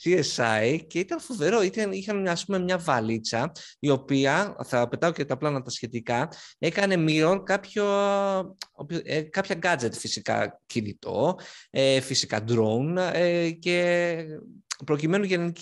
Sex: male